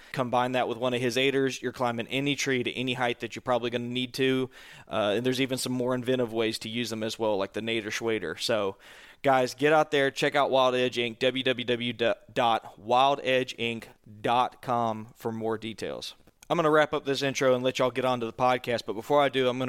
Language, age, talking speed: English, 20-39, 225 wpm